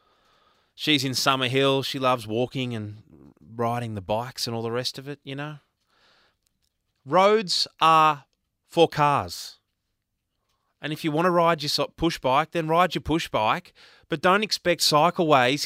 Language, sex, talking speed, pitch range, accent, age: English, male, 155 wpm, 110-155 Hz, Australian, 20-39